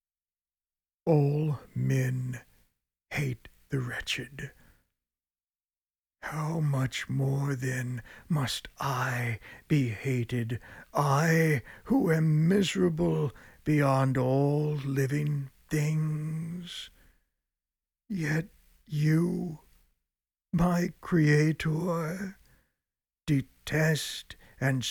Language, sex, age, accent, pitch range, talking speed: English, male, 60-79, American, 125-160 Hz, 65 wpm